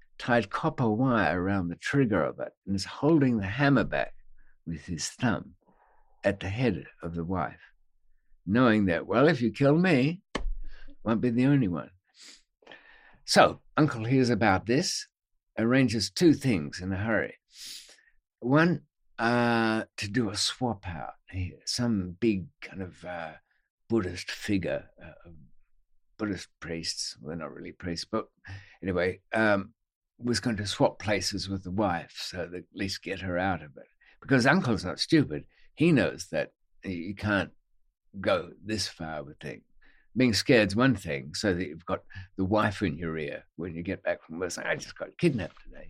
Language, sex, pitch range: English, male, 95-120 Hz